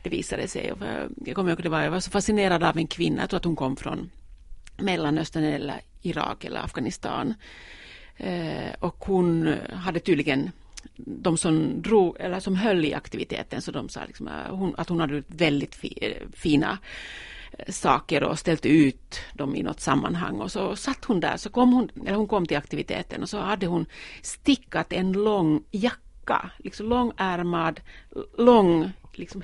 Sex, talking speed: female, 165 wpm